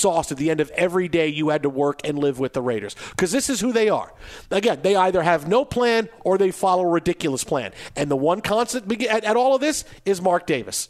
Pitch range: 160-230 Hz